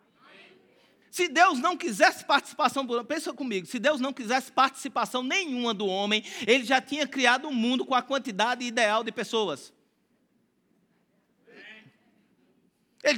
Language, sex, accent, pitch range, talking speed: English, male, Brazilian, 225-295 Hz, 125 wpm